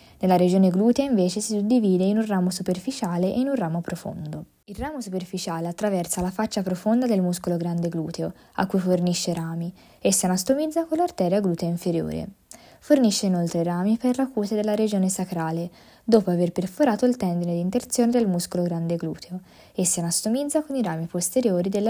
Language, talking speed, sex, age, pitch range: Italian, 180 wpm, female, 20-39, 180-225 Hz